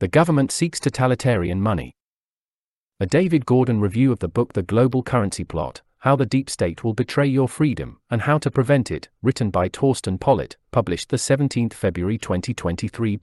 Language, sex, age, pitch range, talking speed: English, male, 40-59, 100-135 Hz, 170 wpm